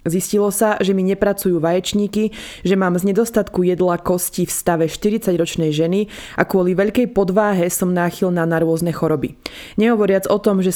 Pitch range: 165-195 Hz